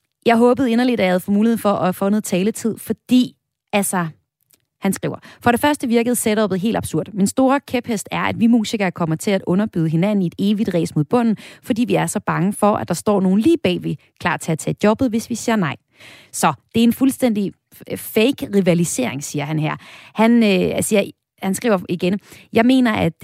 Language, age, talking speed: Danish, 30-49, 210 wpm